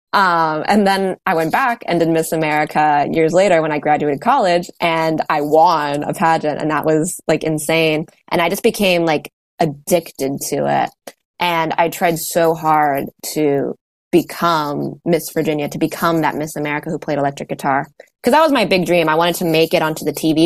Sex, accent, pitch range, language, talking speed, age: female, American, 150-185 Hz, English, 195 wpm, 20-39